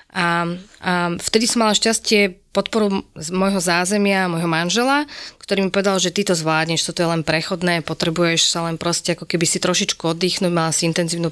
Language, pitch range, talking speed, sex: Slovak, 165-195 Hz, 185 wpm, female